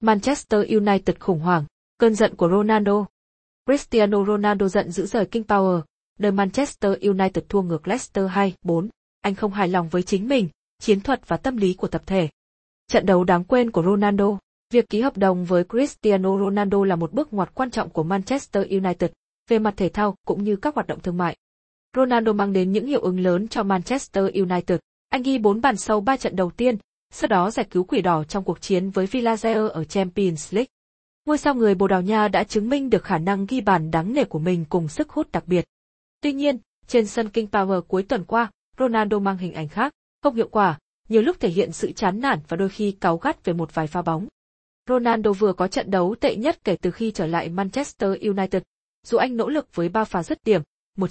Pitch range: 185-225 Hz